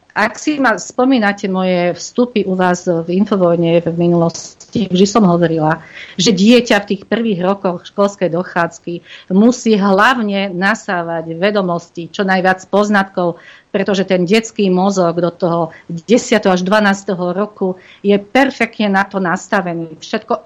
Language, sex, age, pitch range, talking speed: Slovak, female, 50-69, 170-215 Hz, 135 wpm